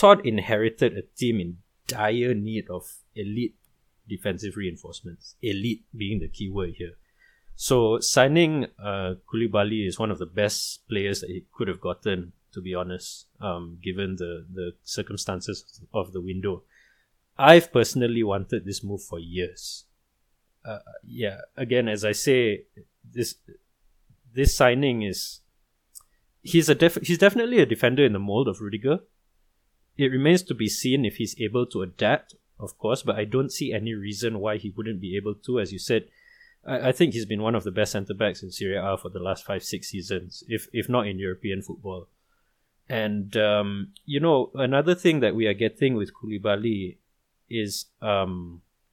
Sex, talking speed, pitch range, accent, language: male, 170 wpm, 95-125 Hz, Malaysian, English